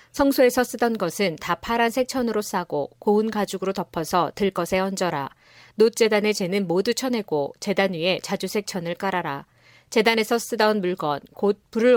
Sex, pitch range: female, 175-215 Hz